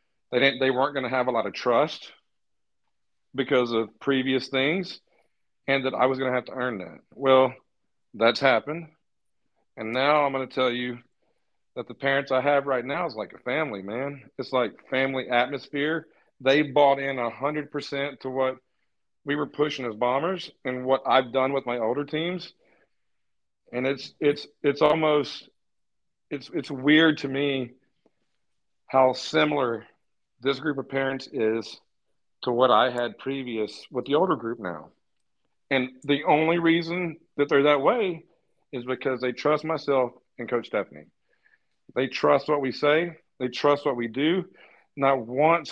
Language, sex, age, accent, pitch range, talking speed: English, male, 40-59, American, 130-150 Hz, 165 wpm